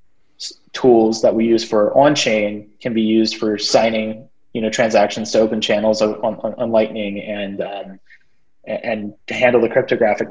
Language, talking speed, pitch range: English, 165 wpm, 105-120 Hz